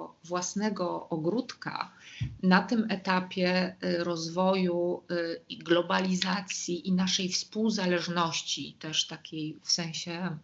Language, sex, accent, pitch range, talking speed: Polish, female, native, 180-215 Hz, 105 wpm